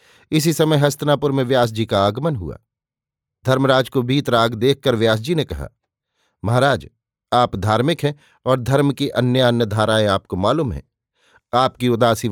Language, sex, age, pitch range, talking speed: Hindi, male, 50-69, 115-135 Hz, 155 wpm